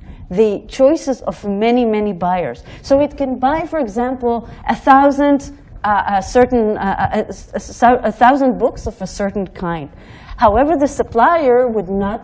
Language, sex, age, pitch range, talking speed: English, female, 40-59, 180-240 Hz, 140 wpm